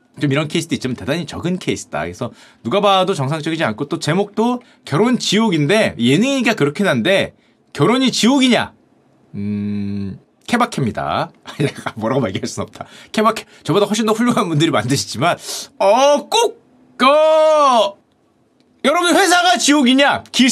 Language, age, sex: Korean, 30-49, male